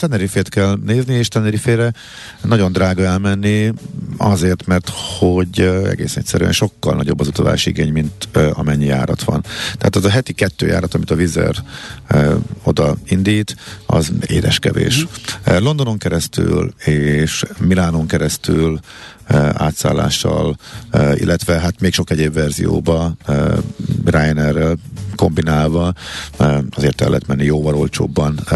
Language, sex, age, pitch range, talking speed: Hungarian, male, 50-69, 85-115 Hz, 120 wpm